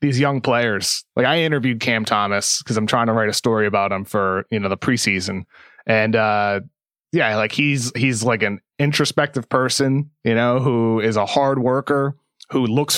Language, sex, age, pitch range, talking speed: English, male, 30-49, 120-150 Hz, 190 wpm